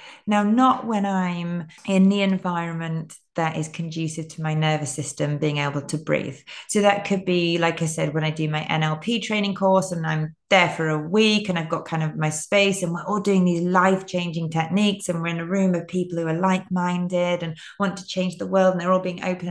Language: English